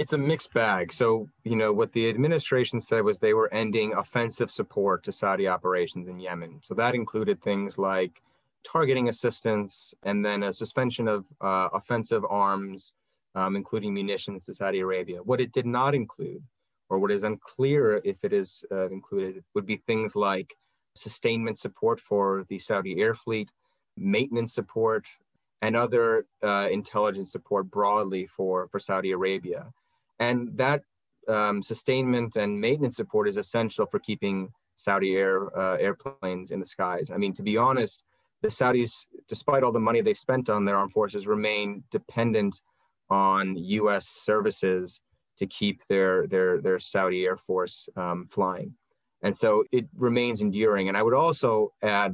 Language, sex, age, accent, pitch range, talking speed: English, male, 30-49, American, 95-120 Hz, 160 wpm